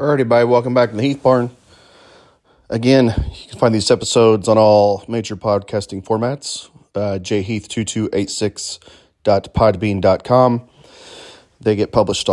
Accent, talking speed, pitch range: American, 110 wpm, 95-115 Hz